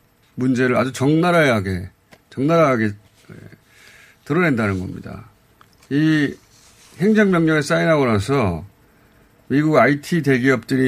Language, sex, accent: Korean, male, native